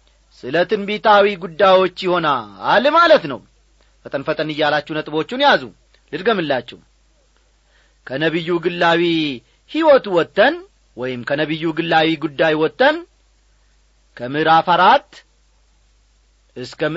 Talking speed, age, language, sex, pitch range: 90 wpm, 40-59, Amharic, male, 140-220 Hz